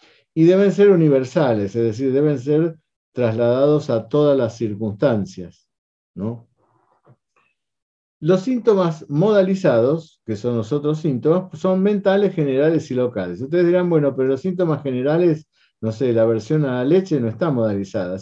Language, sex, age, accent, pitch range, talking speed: Spanish, male, 50-69, Argentinian, 115-160 Hz, 140 wpm